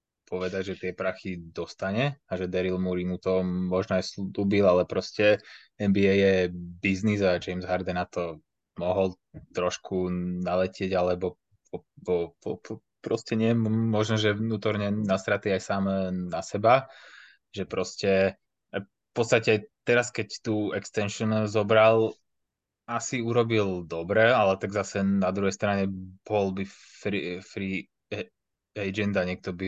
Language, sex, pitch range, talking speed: Slovak, male, 90-105 Hz, 135 wpm